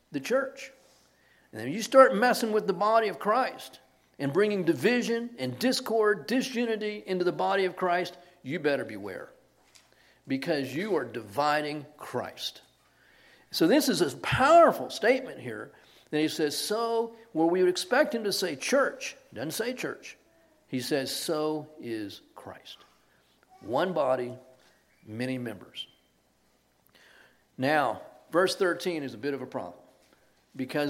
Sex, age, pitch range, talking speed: male, 50-69, 135-215 Hz, 140 wpm